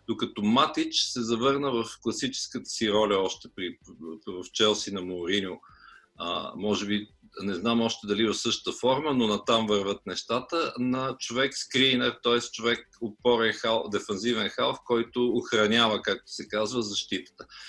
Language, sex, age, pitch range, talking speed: Bulgarian, male, 50-69, 110-135 Hz, 145 wpm